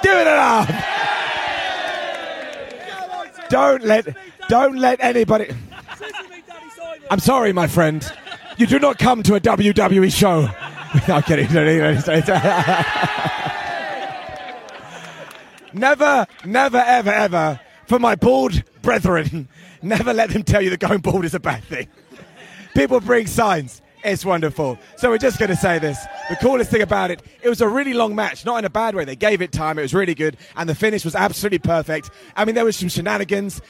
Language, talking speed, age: English, 160 wpm, 30-49